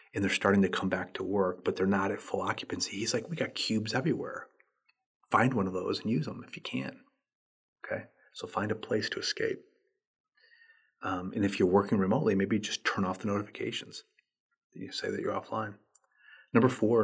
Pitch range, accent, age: 95-120 Hz, American, 30-49